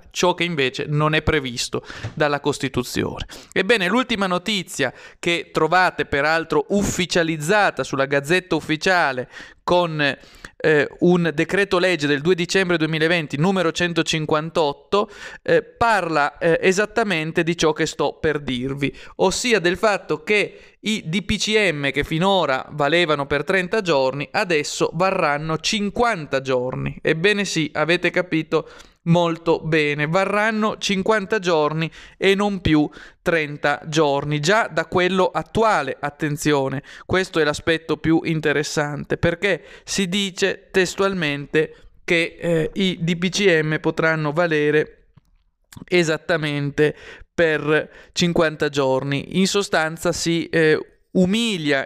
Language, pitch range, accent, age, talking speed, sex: Italian, 150-190 Hz, native, 30-49, 115 wpm, male